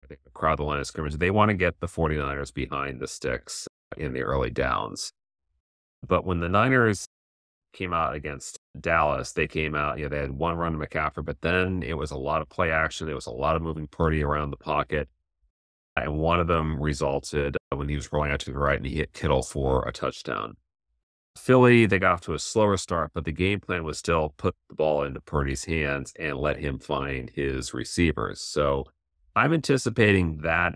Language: English